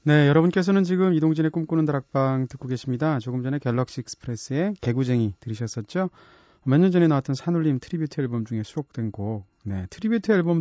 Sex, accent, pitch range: male, native, 115-155 Hz